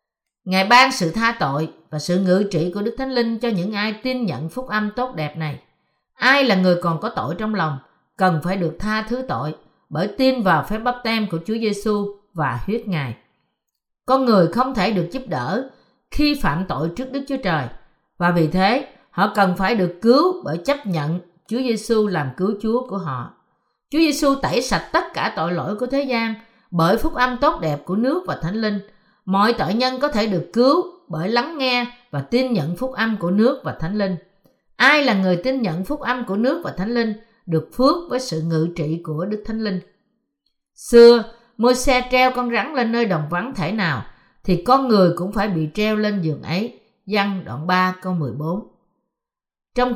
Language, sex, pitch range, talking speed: Vietnamese, female, 175-250 Hz, 205 wpm